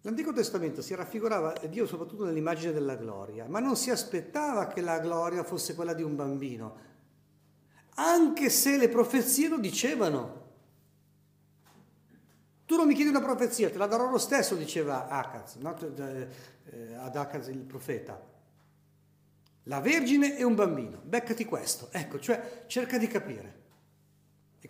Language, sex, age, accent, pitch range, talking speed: Italian, male, 50-69, native, 135-210 Hz, 140 wpm